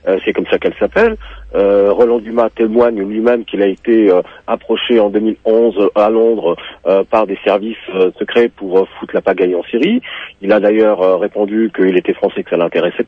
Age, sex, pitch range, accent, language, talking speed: 40-59, male, 100-125 Hz, French, French, 205 wpm